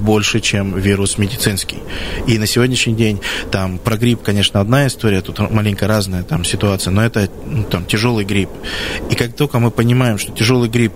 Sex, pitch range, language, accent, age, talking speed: male, 95-115 Hz, Russian, native, 20-39, 165 wpm